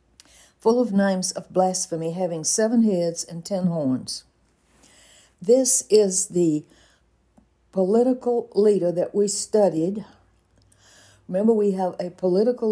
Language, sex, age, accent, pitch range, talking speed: English, female, 60-79, American, 175-215 Hz, 115 wpm